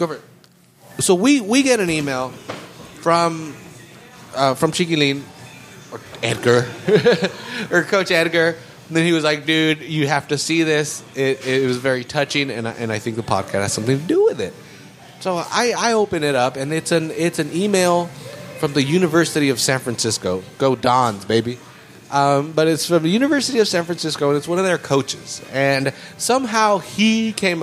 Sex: male